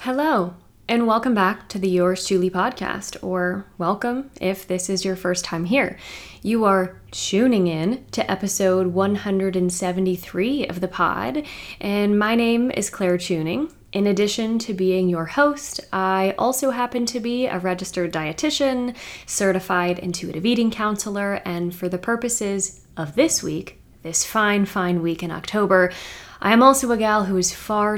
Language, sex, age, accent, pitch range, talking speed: English, female, 20-39, American, 180-230 Hz, 155 wpm